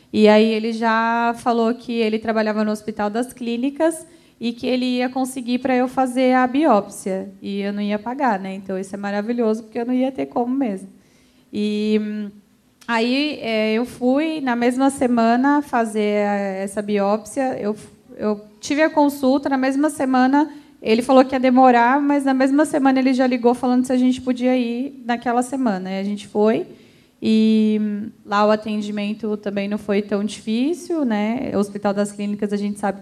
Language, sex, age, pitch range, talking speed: Portuguese, female, 20-39, 210-255 Hz, 180 wpm